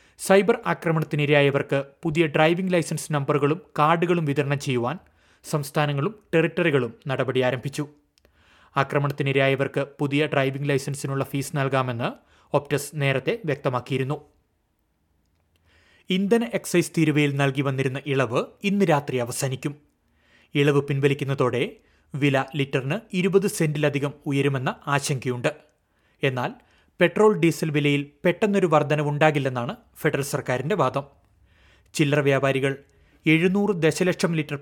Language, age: Malayalam, 30-49